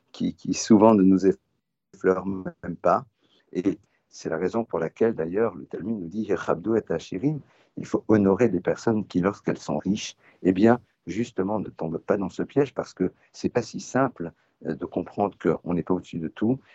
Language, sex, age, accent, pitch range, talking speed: French, male, 50-69, French, 90-115 Hz, 190 wpm